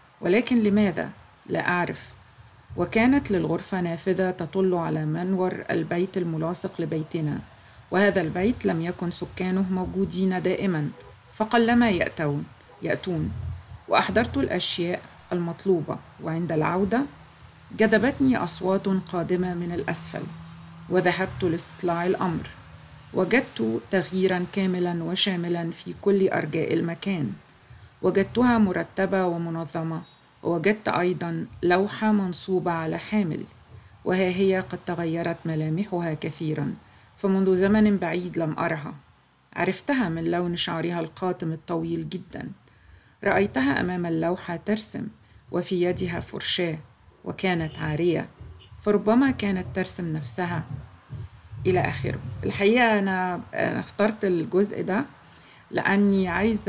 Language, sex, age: Arabic, female, 40-59